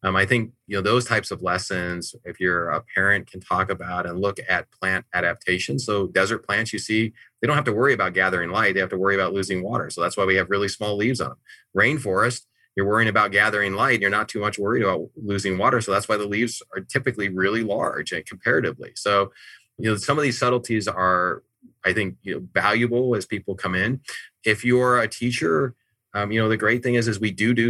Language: English